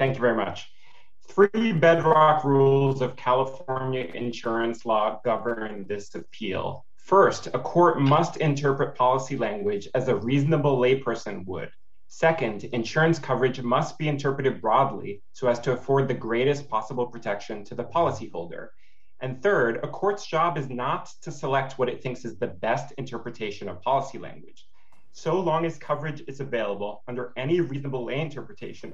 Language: English